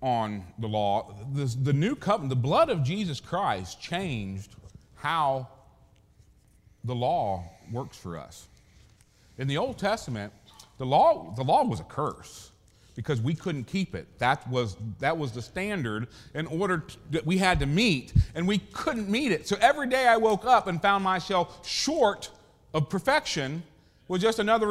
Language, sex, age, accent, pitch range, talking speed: English, male, 40-59, American, 100-165 Hz, 160 wpm